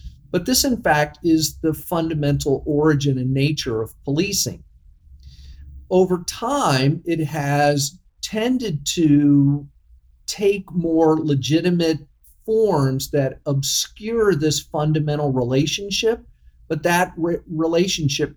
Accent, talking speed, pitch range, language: American, 100 wpm, 130-165 Hz, English